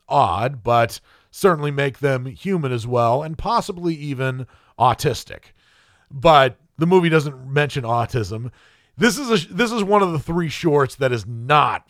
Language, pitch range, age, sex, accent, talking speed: English, 120-170 Hz, 40-59, male, American, 155 wpm